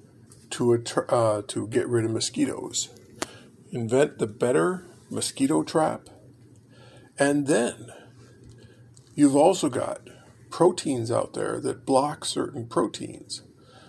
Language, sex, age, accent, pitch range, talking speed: English, male, 50-69, American, 120-140 Hz, 105 wpm